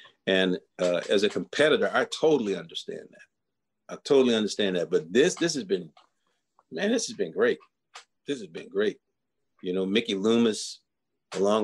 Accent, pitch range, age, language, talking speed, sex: American, 115-170 Hz, 40-59, English, 165 wpm, male